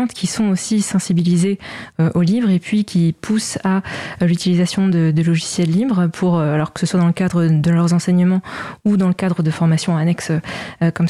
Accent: French